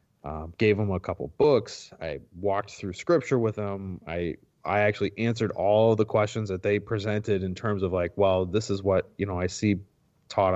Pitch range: 90-110 Hz